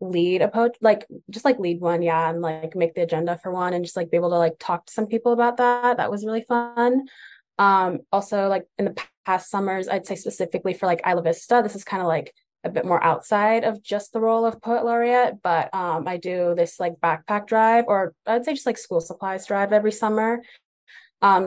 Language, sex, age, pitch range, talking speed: English, female, 20-39, 175-215 Hz, 230 wpm